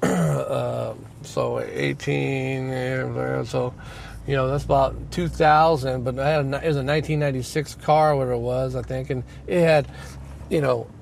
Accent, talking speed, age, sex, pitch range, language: American, 160 wpm, 30-49, male, 130-165 Hz, English